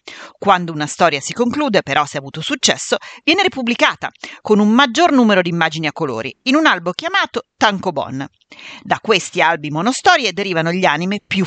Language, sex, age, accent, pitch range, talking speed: Italian, female, 40-59, native, 150-235 Hz, 175 wpm